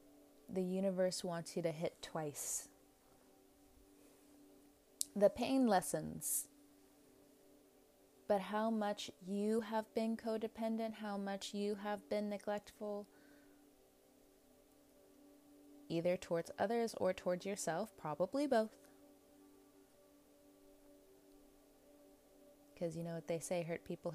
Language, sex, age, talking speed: English, female, 20-39, 95 wpm